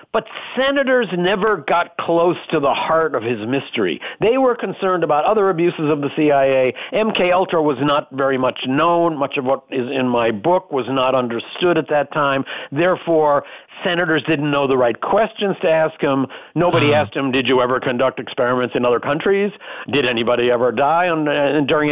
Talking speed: 180 wpm